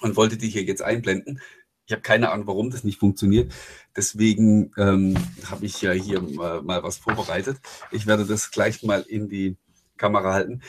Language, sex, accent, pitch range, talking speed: German, male, German, 105-130 Hz, 185 wpm